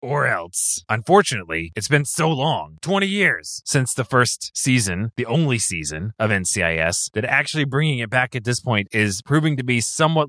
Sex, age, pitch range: male, 20-39, 105-145 Hz